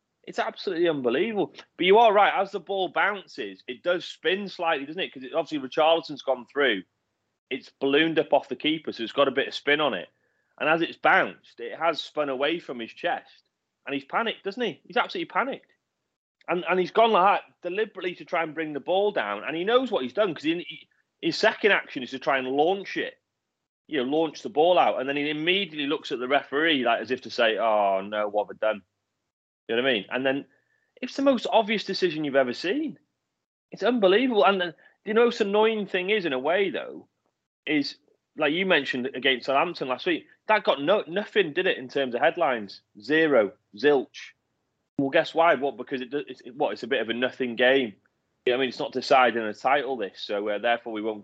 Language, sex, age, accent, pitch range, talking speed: English, male, 30-49, British, 135-215 Hz, 225 wpm